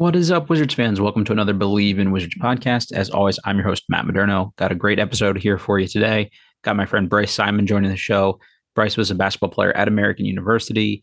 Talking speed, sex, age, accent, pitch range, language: 235 wpm, male, 30-49, American, 100-115 Hz, English